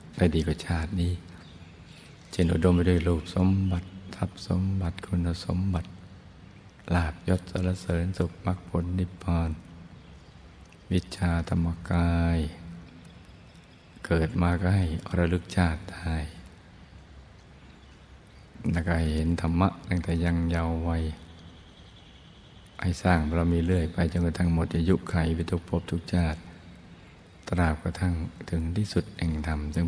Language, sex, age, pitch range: Thai, male, 60-79, 80-90 Hz